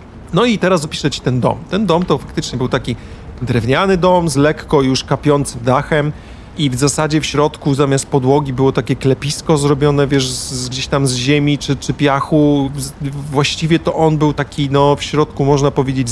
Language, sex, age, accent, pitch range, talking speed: Polish, male, 40-59, native, 130-150 Hz, 180 wpm